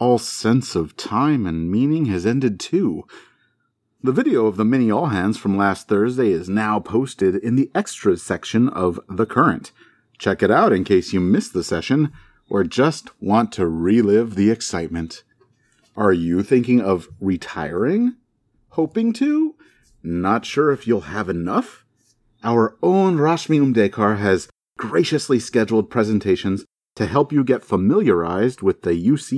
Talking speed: 150 wpm